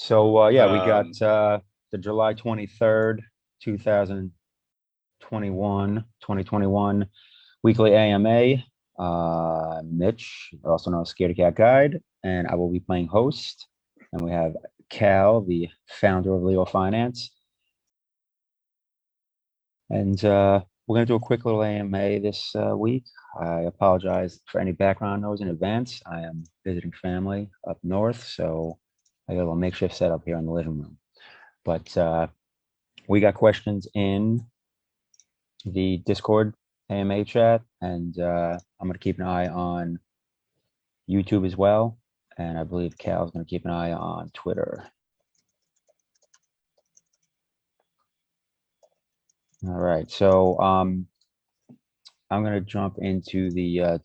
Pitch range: 90-105 Hz